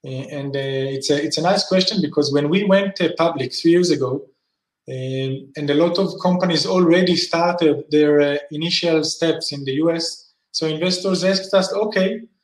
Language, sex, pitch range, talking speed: English, male, 160-195 Hz, 180 wpm